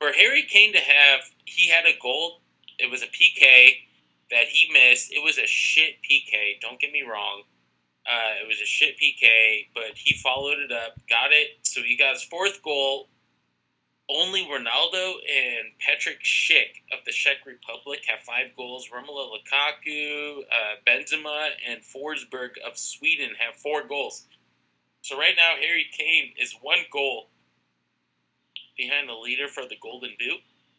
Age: 20-39